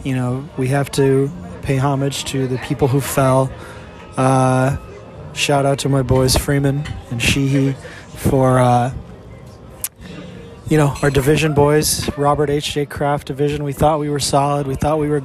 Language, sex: English, male